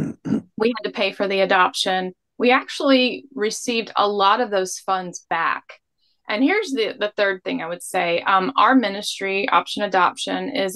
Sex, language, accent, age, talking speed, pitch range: female, English, American, 20-39, 175 wpm, 185-225 Hz